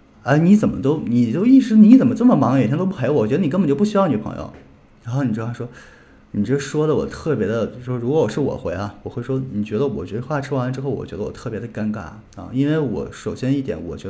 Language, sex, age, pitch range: Chinese, male, 20-39, 105-135 Hz